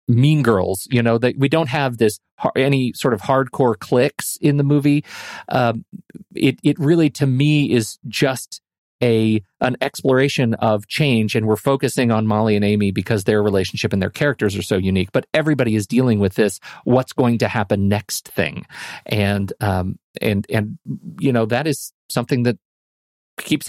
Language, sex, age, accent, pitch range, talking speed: English, male, 40-59, American, 105-135 Hz, 175 wpm